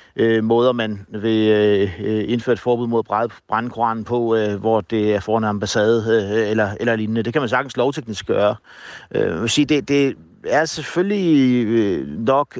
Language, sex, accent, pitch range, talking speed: Danish, male, native, 115-140 Hz, 140 wpm